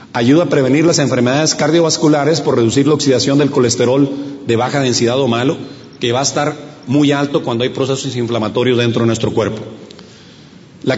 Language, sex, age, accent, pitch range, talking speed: Spanish, male, 40-59, Mexican, 125-150 Hz, 175 wpm